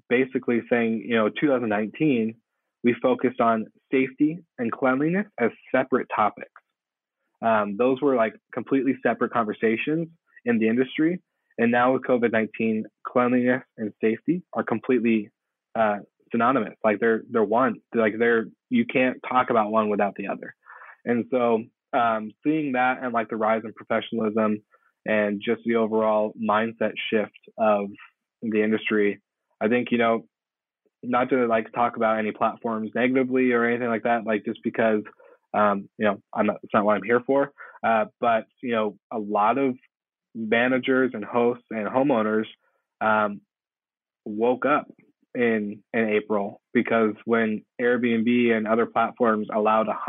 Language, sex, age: English, male, 20-39